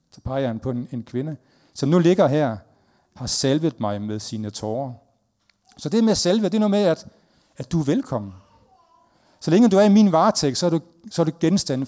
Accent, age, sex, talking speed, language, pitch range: native, 40-59, male, 195 wpm, Danish, 125-190 Hz